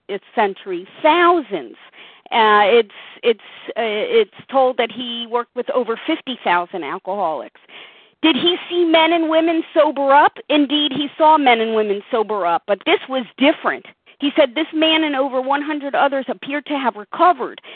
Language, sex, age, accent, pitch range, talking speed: English, female, 40-59, American, 235-315 Hz, 160 wpm